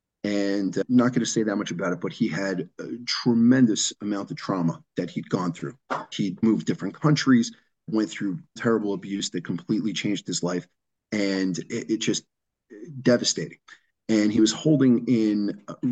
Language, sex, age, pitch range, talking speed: English, male, 30-49, 100-120 Hz, 175 wpm